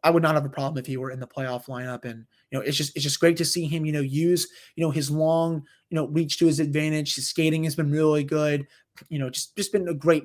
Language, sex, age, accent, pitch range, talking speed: English, male, 20-39, American, 140-170 Hz, 295 wpm